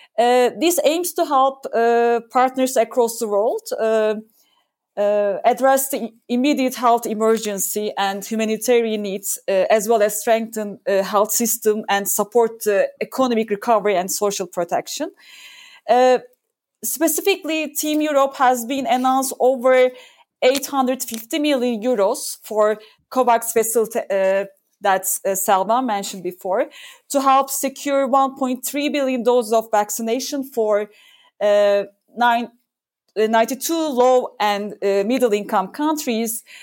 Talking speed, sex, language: 120 wpm, female, English